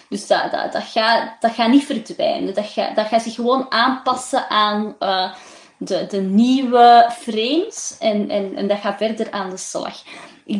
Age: 20-39